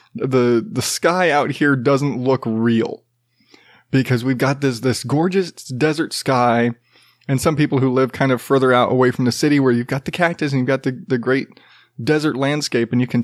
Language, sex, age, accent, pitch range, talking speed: English, male, 20-39, American, 125-185 Hz, 205 wpm